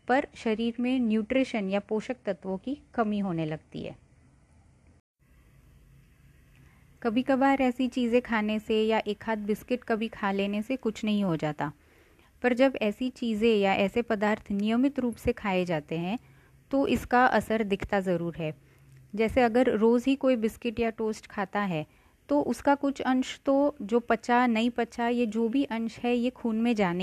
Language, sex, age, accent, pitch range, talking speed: English, female, 30-49, Indian, 200-240 Hz, 125 wpm